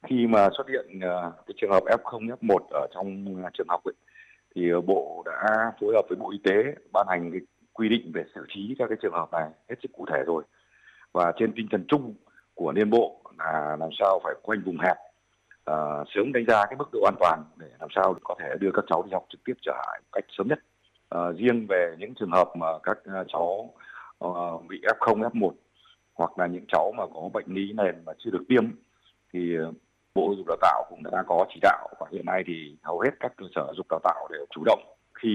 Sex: male